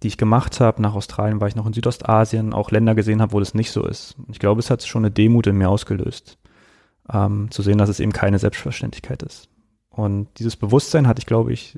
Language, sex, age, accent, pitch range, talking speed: German, male, 30-49, German, 100-115 Hz, 235 wpm